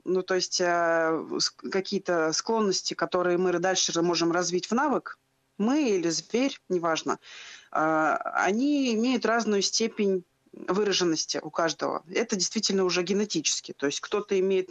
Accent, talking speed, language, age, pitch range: native, 125 wpm, Russian, 20-39, 175-220 Hz